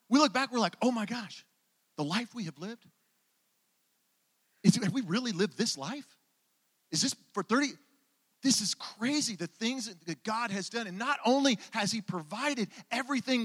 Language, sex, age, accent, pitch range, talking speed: English, male, 40-59, American, 170-230 Hz, 175 wpm